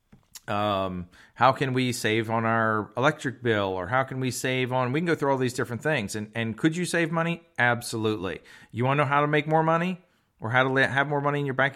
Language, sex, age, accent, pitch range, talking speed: English, male, 40-59, American, 120-145 Hz, 250 wpm